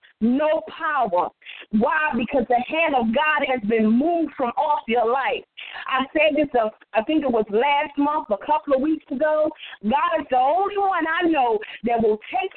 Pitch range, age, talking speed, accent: 245-330 Hz, 50-69, 190 wpm, American